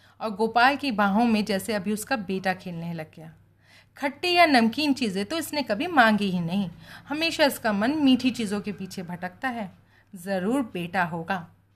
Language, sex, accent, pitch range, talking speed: Hindi, female, native, 195-255 Hz, 175 wpm